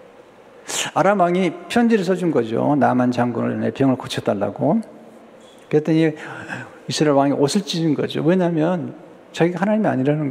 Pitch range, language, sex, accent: 130-180 Hz, Korean, male, native